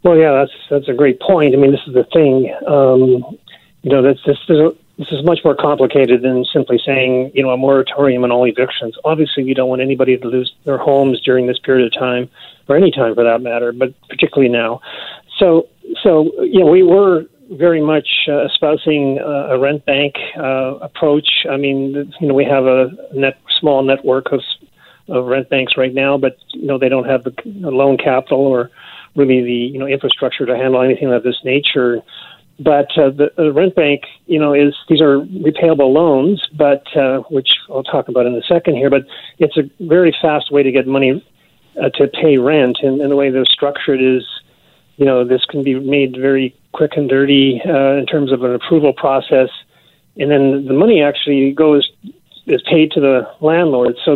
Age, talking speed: 40-59, 205 wpm